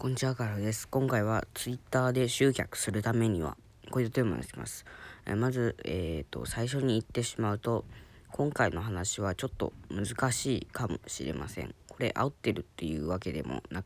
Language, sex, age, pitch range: Japanese, female, 20-39, 90-115 Hz